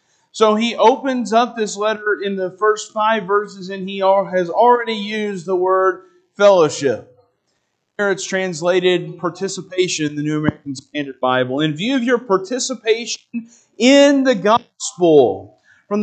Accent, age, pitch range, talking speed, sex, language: American, 40-59, 175-225 Hz, 140 wpm, male, English